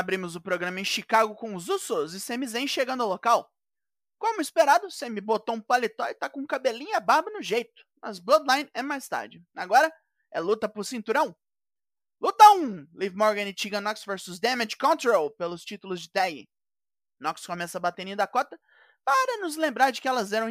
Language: Portuguese